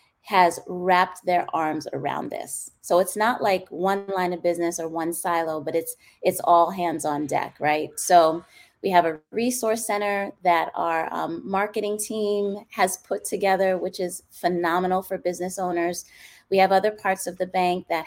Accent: American